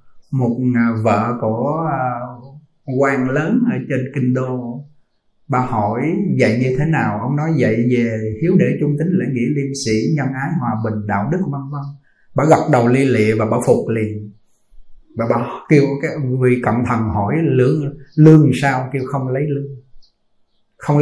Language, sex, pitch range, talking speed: Vietnamese, male, 120-150 Hz, 175 wpm